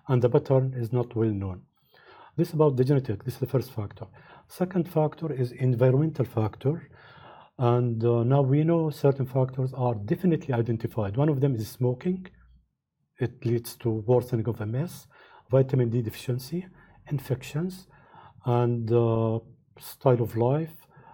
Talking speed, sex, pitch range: 150 wpm, male, 120-145 Hz